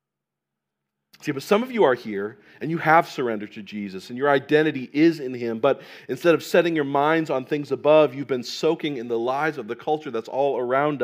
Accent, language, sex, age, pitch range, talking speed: American, English, male, 40-59, 115-160 Hz, 215 wpm